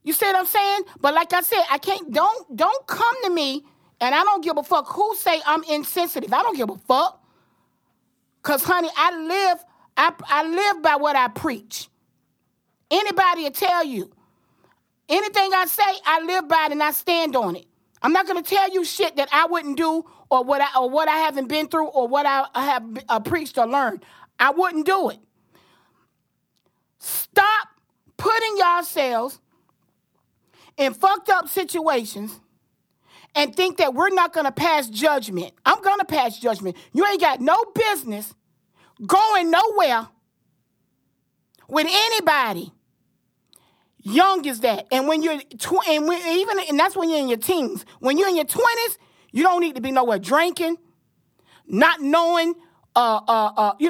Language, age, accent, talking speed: English, 40-59, American, 170 wpm